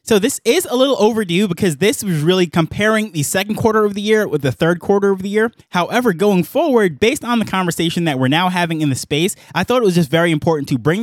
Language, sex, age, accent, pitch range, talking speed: English, male, 20-39, American, 140-195 Hz, 255 wpm